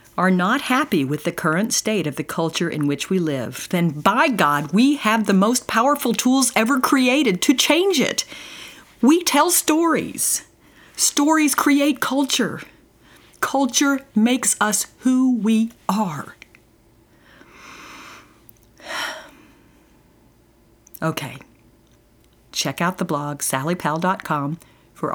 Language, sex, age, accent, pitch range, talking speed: English, female, 50-69, American, 135-215 Hz, 110 wpm